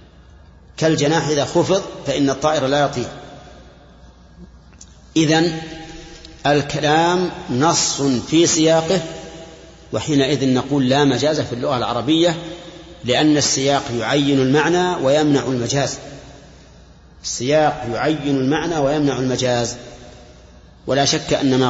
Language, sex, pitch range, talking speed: Arabic, male, 125-160 Hz, 95 wpm